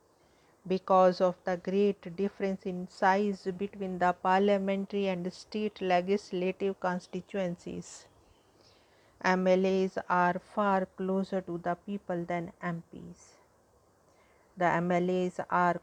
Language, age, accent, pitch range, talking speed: English, 50-69, Indian, 180-205 Hz, 100 wpm